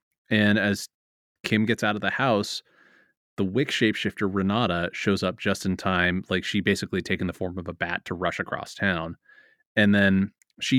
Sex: male